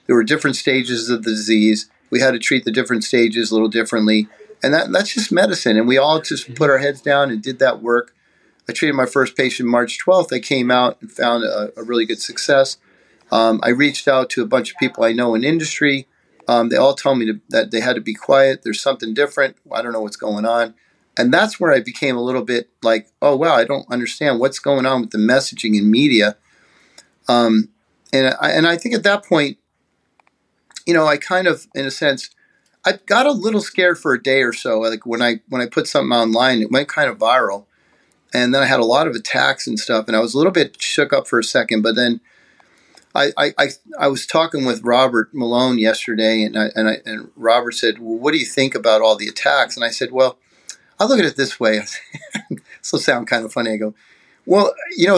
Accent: American